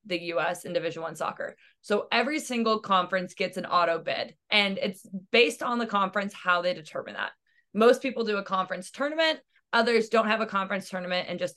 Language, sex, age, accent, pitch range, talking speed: English, female, 20-39, American, 180-230 Hz, 195 wpm